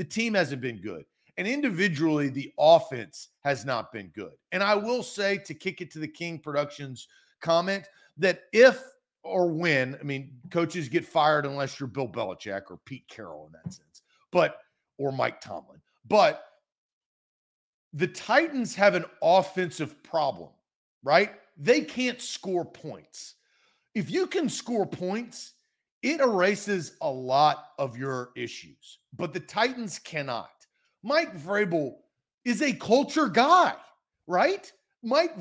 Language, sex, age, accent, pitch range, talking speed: English, male, 40-59, American, 145-230 Hz, 140 wpm